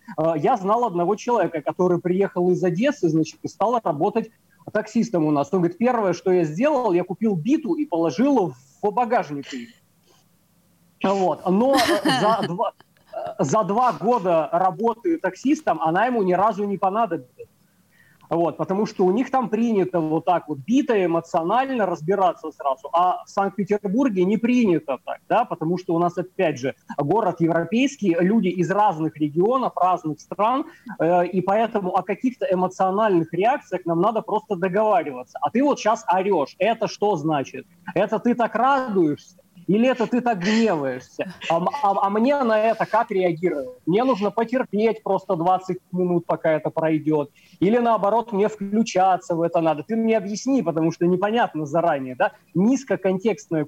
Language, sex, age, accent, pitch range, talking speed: Russian, male, 30-49, native, 170-225 Hz, 155 wpm